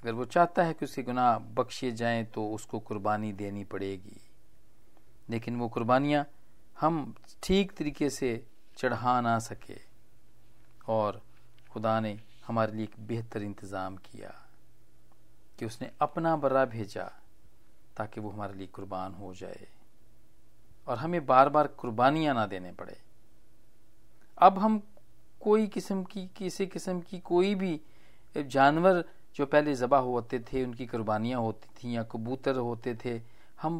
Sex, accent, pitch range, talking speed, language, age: male, native, 110-145 Hz, 140 wpm, Hindi, 40-59